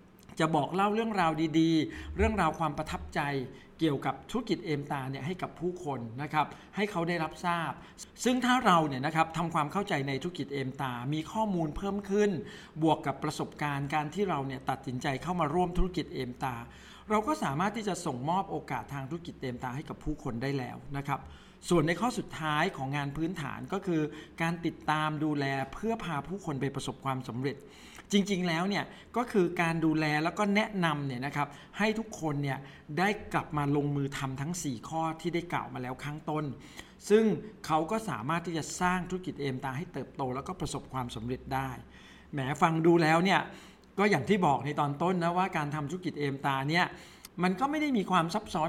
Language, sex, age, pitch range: Thai, male, 60-79, 140-180 Hz